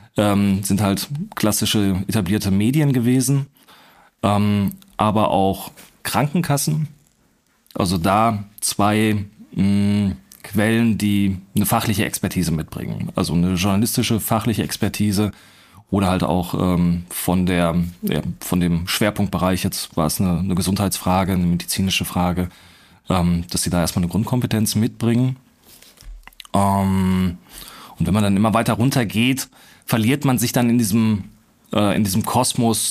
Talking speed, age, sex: 130 wpm, 30-49, male